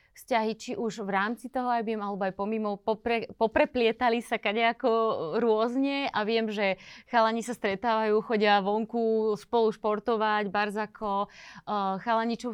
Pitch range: 200-230 Hz